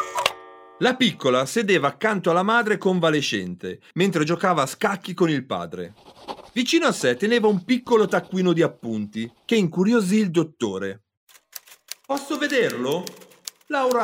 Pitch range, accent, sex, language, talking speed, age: 140-230 Hz, native, male, Italian, 130 wpm, 40-59